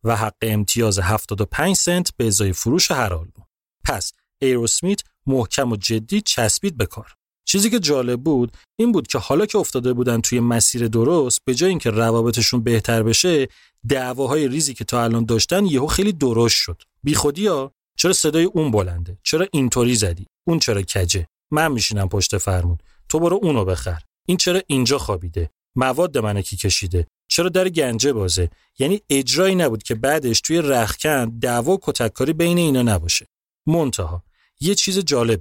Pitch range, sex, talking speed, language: 105-145 Hz, male, 160 wpm, Persian